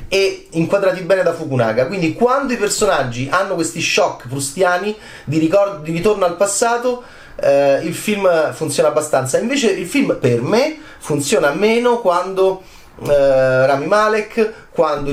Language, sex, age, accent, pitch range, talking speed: Italian, male, 30-49, native, 130-190 Hz, 135 wpm